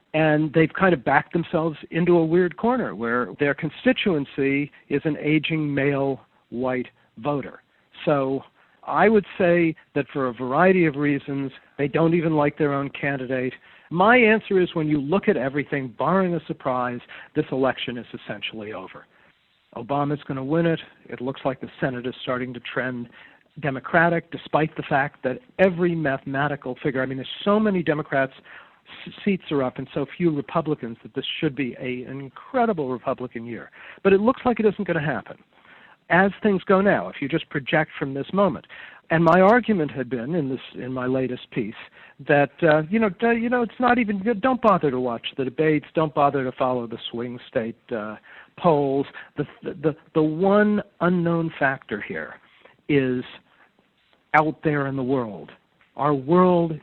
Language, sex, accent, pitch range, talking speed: English, male, American, 135-170 Hz, 175 wpm